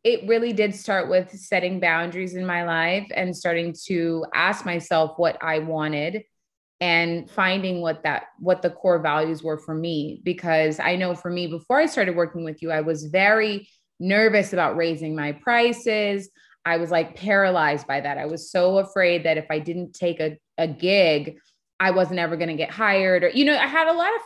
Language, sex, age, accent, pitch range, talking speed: English, female, 20-39, American, 165-190 Hz, 200 wpm